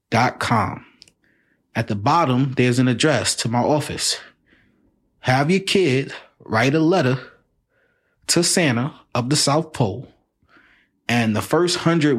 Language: English